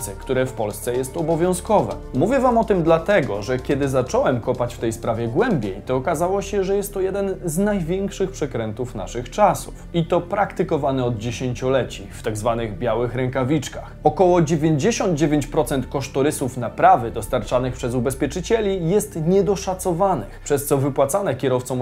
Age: 20-39